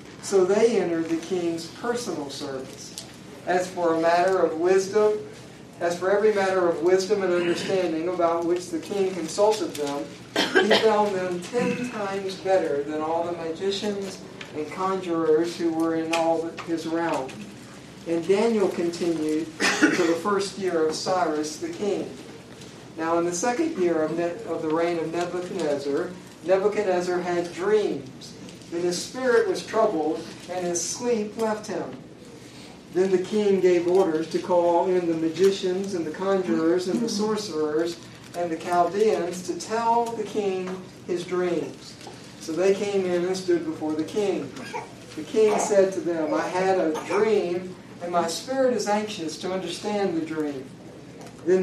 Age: 60-79